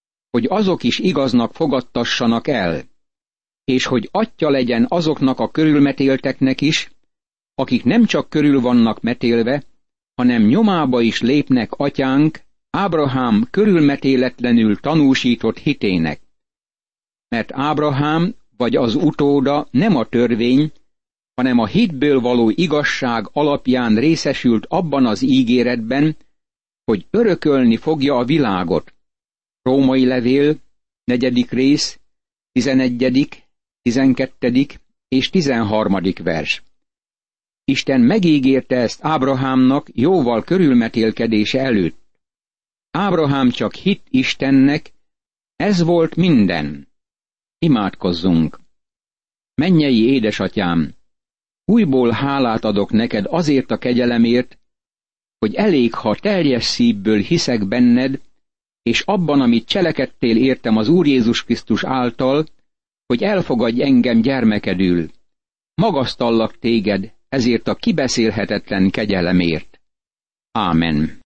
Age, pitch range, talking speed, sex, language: 60-79, 115-150 Hz, 95 wpm, male, Hungarian